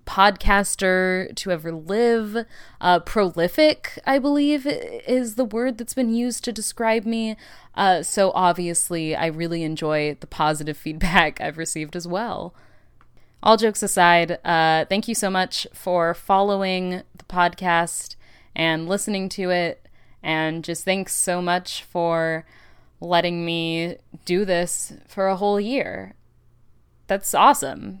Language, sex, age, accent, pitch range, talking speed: English, female, 20-39, American, 165-220 Hz, 135 wpm